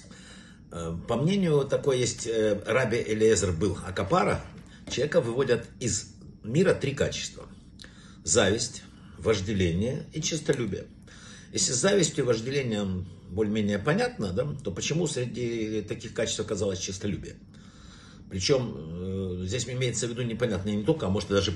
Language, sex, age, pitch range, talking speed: Russian, male, 60-79, 100-140 Hz, 120 wpm